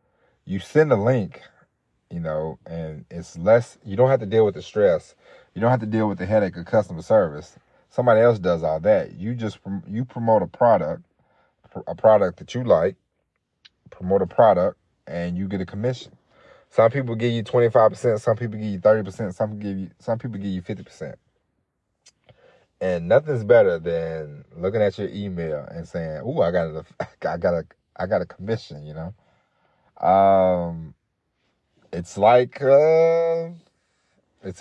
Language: English